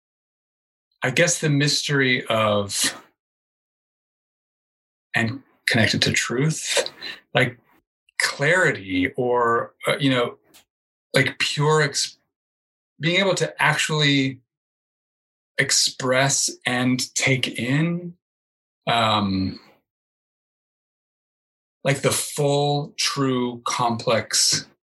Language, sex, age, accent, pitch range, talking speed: English, male, 30-49, American, 110-150 Hz, 75 wpm